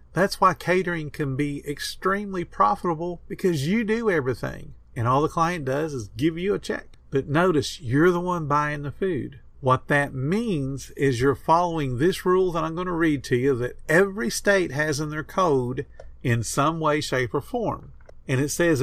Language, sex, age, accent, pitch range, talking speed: English, male, 50-69, American, 135-185 Hz, 190 wpm